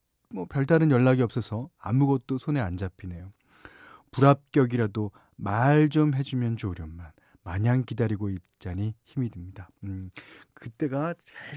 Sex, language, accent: male, Korean, native